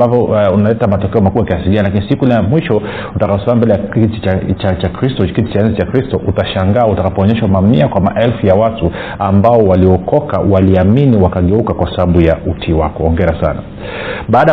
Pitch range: 95-120 Hz